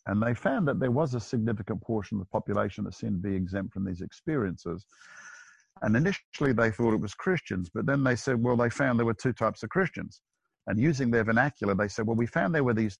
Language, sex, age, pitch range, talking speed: English, male, 50-69, 100-125 Hz, 240 wpm